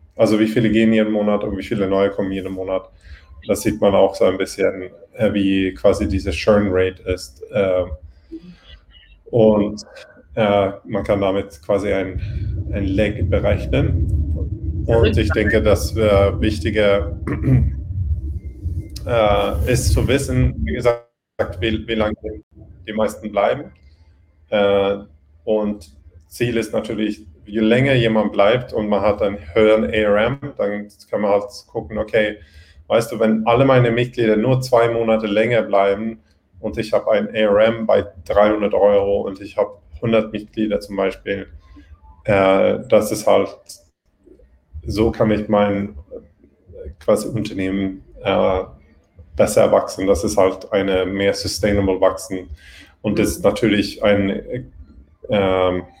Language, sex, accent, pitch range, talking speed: German, male, German, 85-110 Hz, 130 wpm